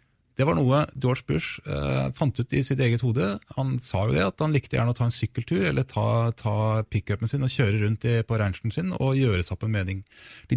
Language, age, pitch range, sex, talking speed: English, 30-49, 110-130 Hz, male, 220 wpm